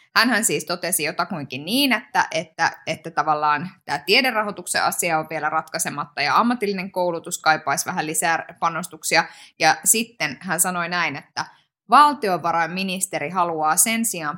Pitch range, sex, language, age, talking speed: 155-190 Hz, female, Finnish, 20-39, 135 wpm